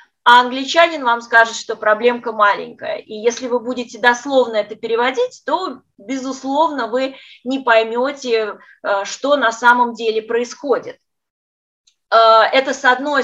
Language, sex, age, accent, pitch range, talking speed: Russian, female, 20-39, native, 230-290 Hz, 120 wpm